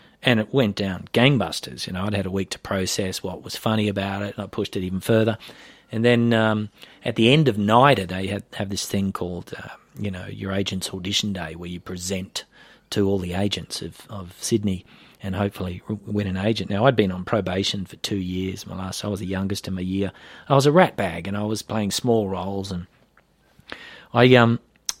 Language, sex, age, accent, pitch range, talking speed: English, male, 30-49, Australian, 95-115 Hz, 220 wpm